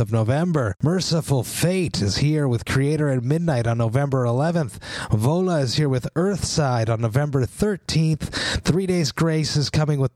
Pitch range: 120-150 Hz